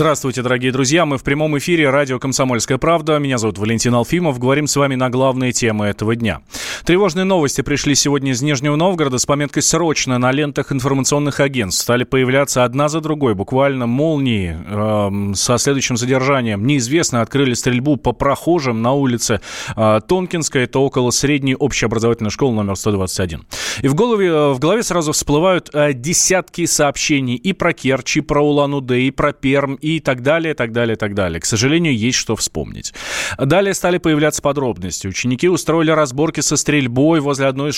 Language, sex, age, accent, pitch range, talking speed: Russian, male, 20-39, native, 120-150 Hz, 170 wpm